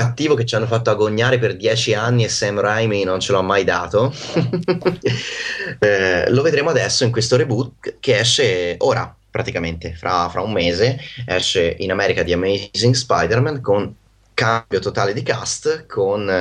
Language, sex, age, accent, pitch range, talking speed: Italian, male, 20-39, native, 90-125 Hz, 155 wpm